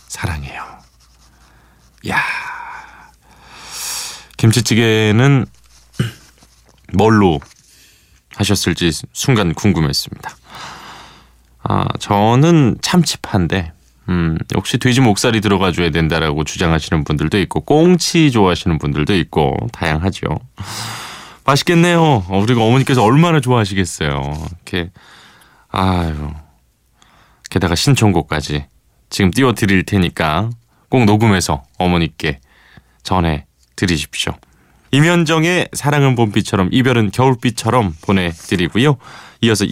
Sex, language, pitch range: male, Korean, 80-125 Hz